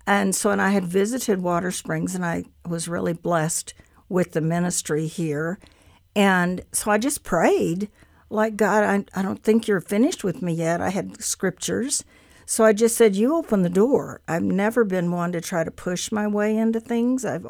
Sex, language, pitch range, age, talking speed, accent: female, English, 170-210 Hz, 60-79, 195 wpm, American